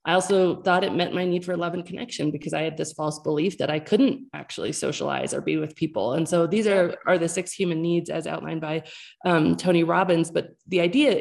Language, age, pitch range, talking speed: English, 20-39, 165-200 Hz, 235 wpm